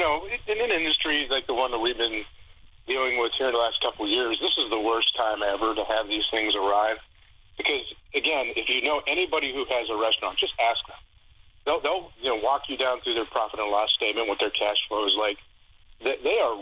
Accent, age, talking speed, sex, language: American, 40-59, 240 wpm, male, English